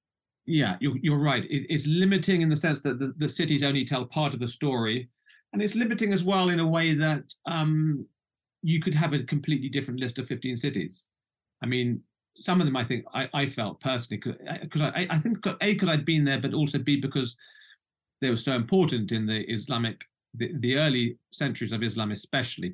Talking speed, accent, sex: 210 wpm, British, male